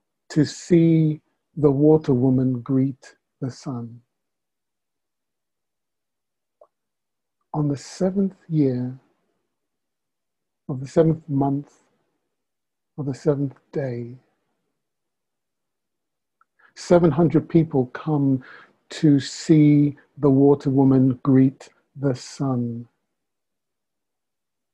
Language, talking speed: English, 75 wpm